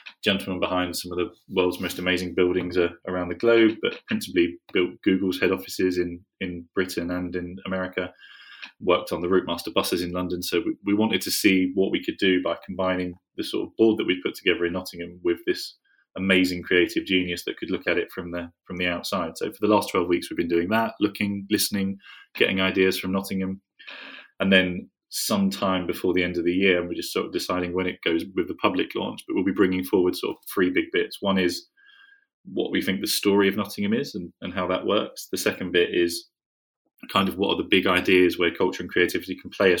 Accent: British